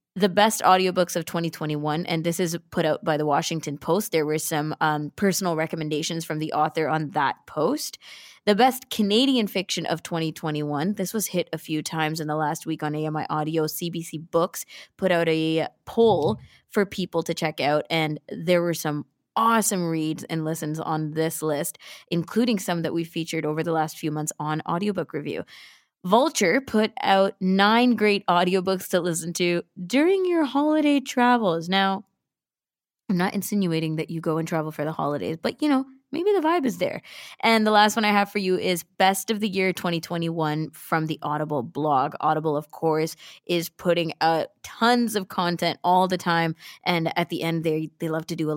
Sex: female